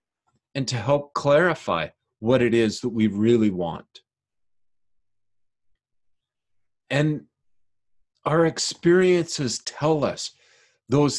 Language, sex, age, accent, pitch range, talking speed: English, male, 40-59, American, 105-140 Hz, 90 wpm